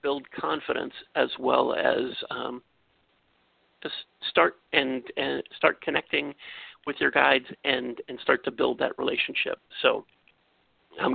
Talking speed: 130 wpm